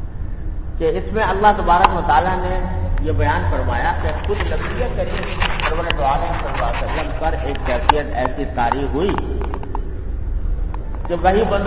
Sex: male